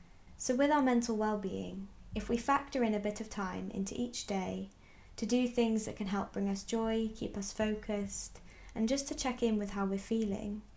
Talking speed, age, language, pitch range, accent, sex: 205 wpm, 20-39, English, 185-215 Hz, British, female